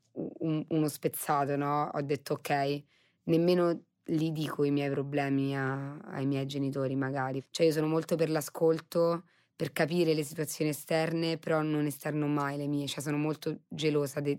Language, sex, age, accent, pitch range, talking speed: Italian, female, 20-39, native, 145-160 Hz, 160 wpm